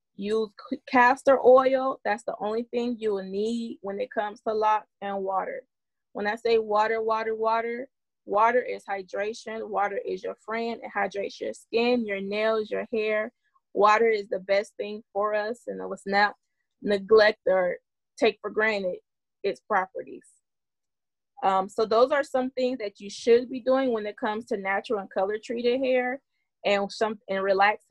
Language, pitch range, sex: English, 205-255 Hz, female